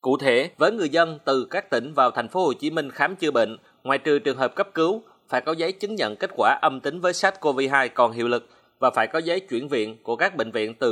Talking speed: 265 wpm